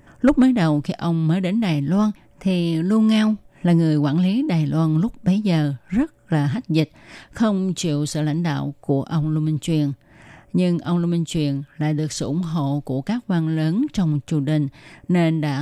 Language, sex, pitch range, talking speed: Vietnamese, female, 150-190 Hz, 210 wpm